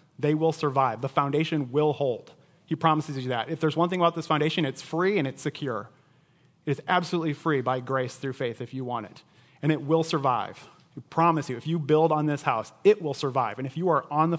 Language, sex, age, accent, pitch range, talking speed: English, male, 30-49, American, 140-170 Hz, 235 wpm